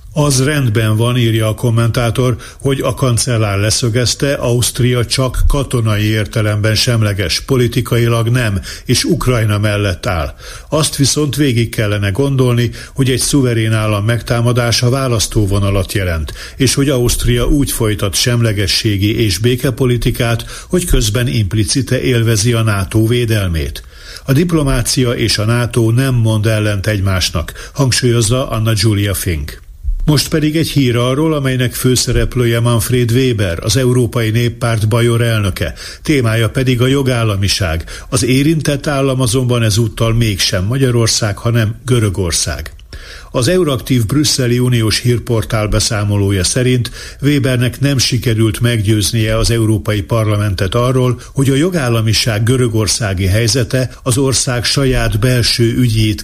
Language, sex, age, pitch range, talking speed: Hungarian, male, 60-79, 105-130 Hz, 120 wpm